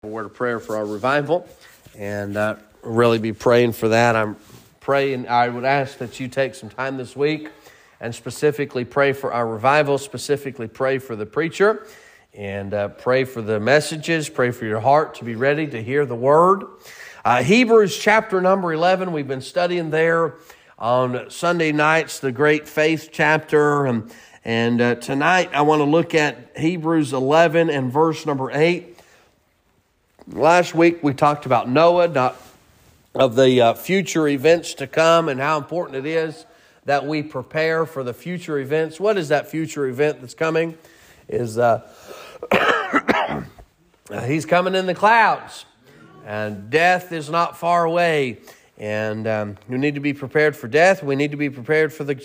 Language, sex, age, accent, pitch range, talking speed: English, male, 40-59, American, 125-170 Hz, 170 wpm